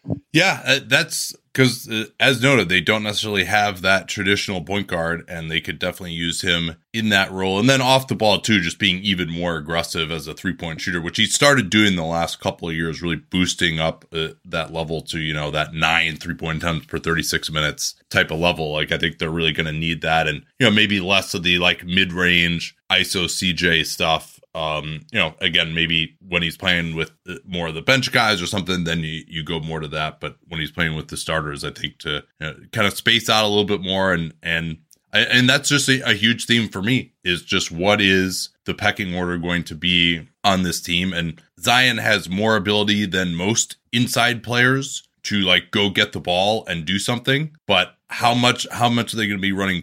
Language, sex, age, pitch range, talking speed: English, male, 20-39, 85-110 Hz, 220 wpm